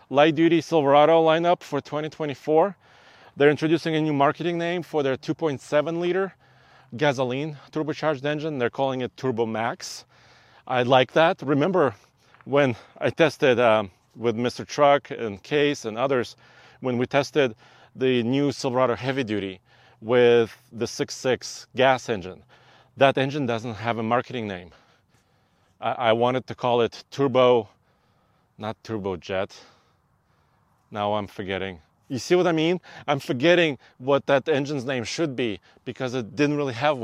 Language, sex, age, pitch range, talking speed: English, male, 30-49, 115-145 Hz, 145 wpm